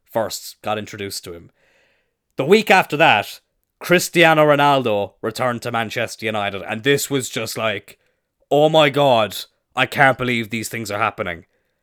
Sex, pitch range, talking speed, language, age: male, 110-155 Hz, 150 wpm, English, 20-39